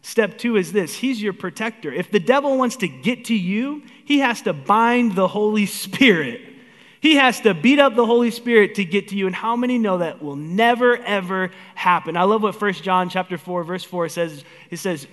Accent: American